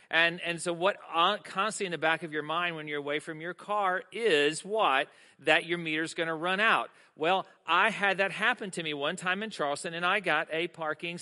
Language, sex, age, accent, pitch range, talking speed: English, male, 40-59, American, 165-200 Hz, 225 wpm